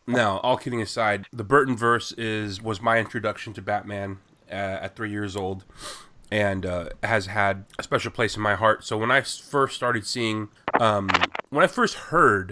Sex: male